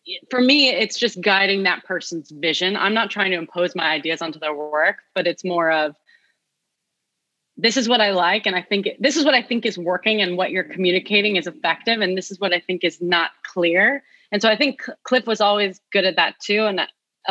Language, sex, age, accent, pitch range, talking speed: English, female, 30-49, American, 175-215 Hz, 230 wpm